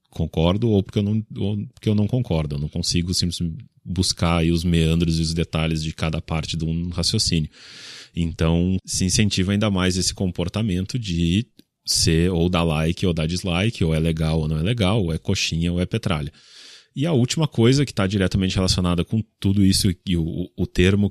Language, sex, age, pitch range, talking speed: Portuguese, male, 30-49, 85-100 Hz, 200 wpm